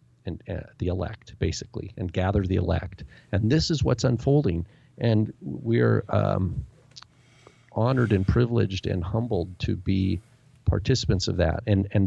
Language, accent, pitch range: English, American, 105-130 Hz